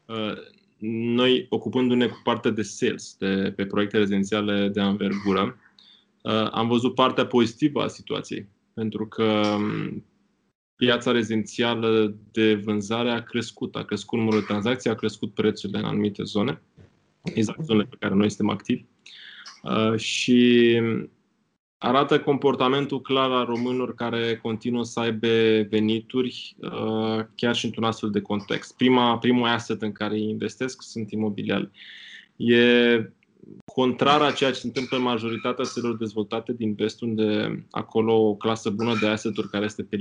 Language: Romanian